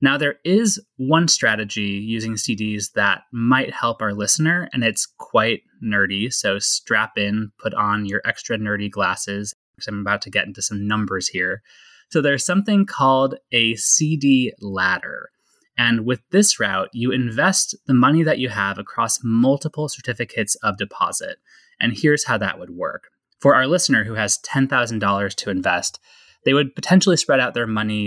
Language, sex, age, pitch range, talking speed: English, male, 20-39, 105-145 Hz, 165 wpm